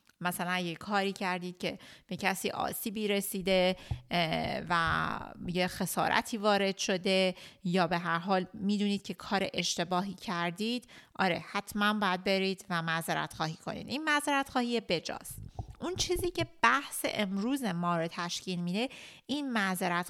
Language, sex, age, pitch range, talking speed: Persian, female, 30-49, 185-235 Hz, 135 wpm